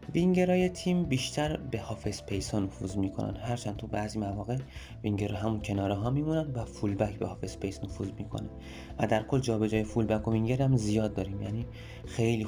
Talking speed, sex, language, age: 180 wpm, male, Persian, 20-39